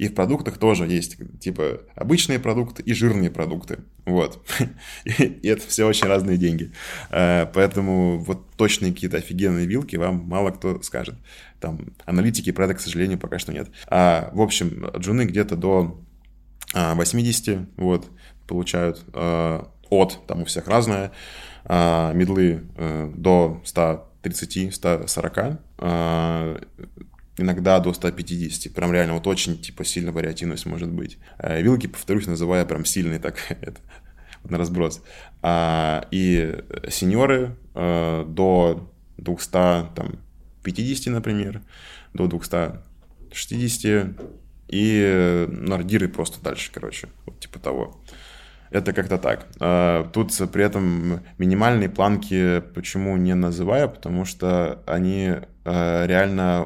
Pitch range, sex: 85-95 Hz, male